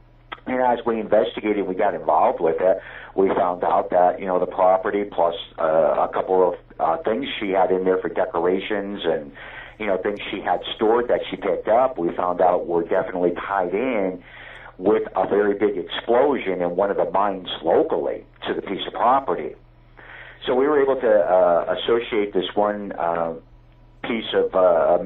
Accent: American